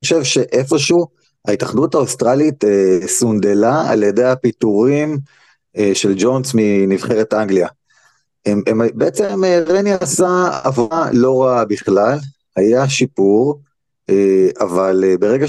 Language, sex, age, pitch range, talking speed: Hebrew, male, 30-49, 115-160 Hz, 125 wpm